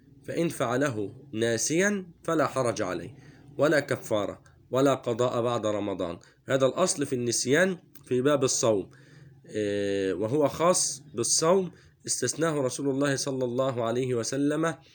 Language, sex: Arabic, male